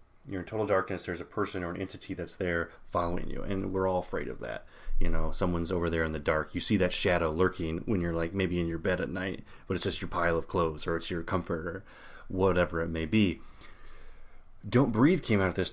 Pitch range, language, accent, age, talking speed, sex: 85-100 Hz, English, American, 30-49, 245 wpm, male